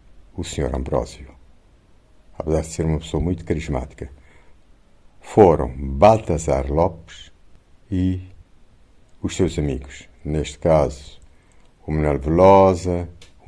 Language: Portuguese